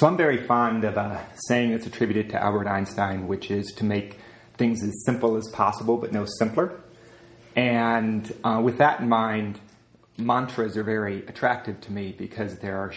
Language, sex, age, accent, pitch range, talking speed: English, male, 30-49, American, 105-120 Hz, 180 wpm